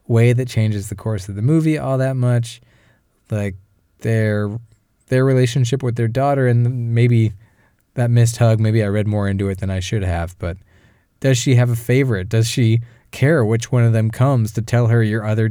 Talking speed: 200 wpm